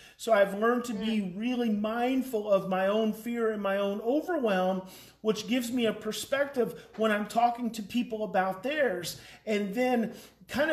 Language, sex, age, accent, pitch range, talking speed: English, male, 40-59, American, 195-250 Hz, 170 wpm